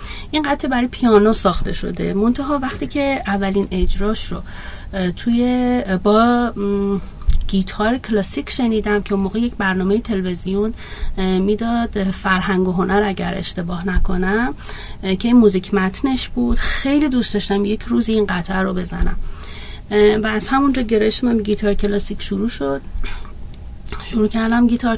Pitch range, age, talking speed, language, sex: 185-215 Hz, 30-49, 125 wpm, Persian, female